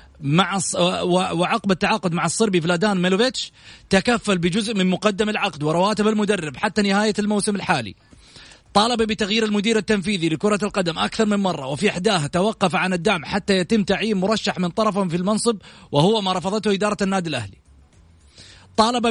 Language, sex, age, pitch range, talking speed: Arabic, male, 30-49, 180-220 Hz, 150 wpm